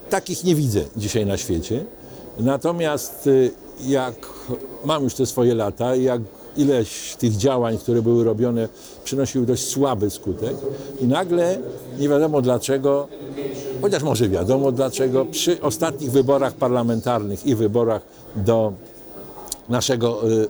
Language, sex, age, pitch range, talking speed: Polish, male, 50-69, 115-140 Hz, 120 wpm